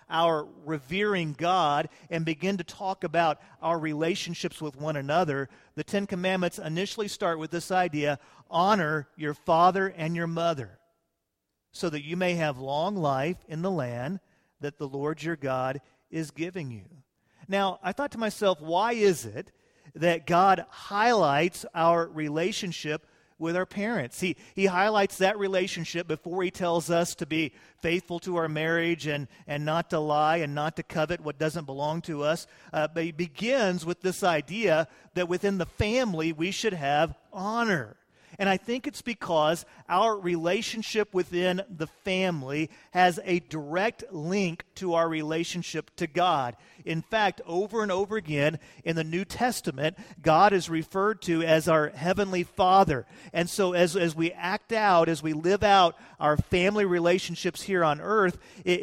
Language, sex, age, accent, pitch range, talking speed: English, male, 40-59, American, 155-185 Hz, 165 wpm